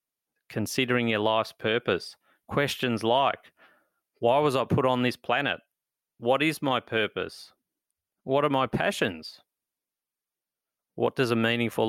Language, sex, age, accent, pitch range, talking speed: English, male, 30-49, Australian, 110-130 Hz, 125 wpm